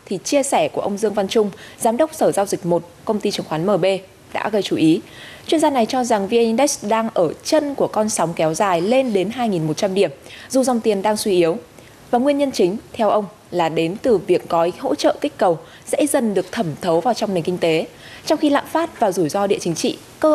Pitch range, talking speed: 175-235 Hz, 250 wpm